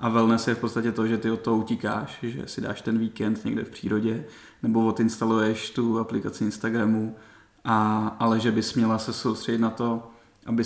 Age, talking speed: 30-49, 195 wpm